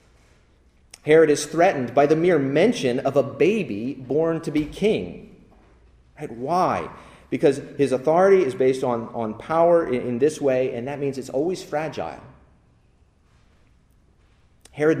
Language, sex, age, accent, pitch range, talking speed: English, male, 30-49, American, 115-150 Hz, 135 wpm